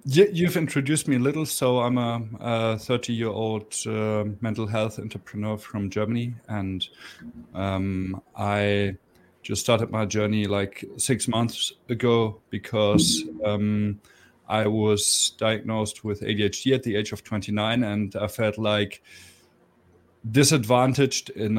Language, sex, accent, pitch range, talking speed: English, male, German, 100-120 Hz, 120 wpm